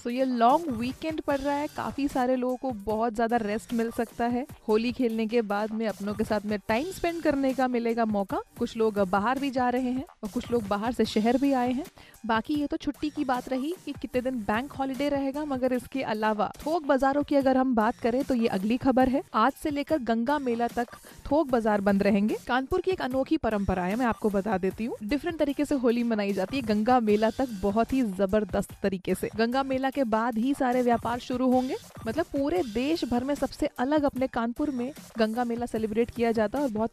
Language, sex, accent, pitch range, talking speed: Hindi, female, native, 220-270 Hz, 225 wpm